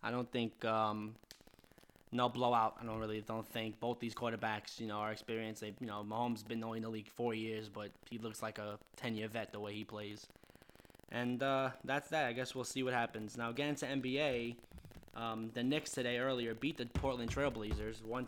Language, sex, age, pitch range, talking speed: English, male, 10-29, 110-130 Hz, 210 wpm